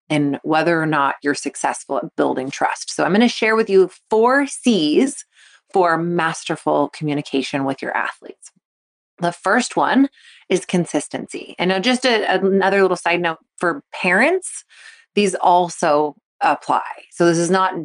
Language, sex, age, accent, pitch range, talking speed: English, female, 30-49, American, 160-195 Hz, 155 wpm